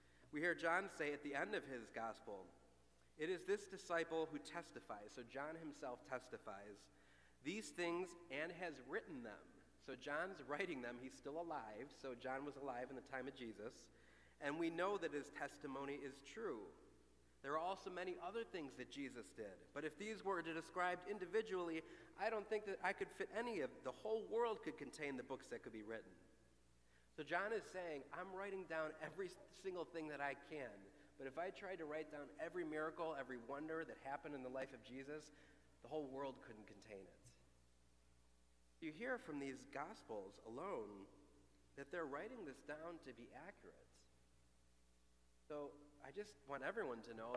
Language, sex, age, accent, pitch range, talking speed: English, male, 40-59, American, 125-165 Hz, 180 wpm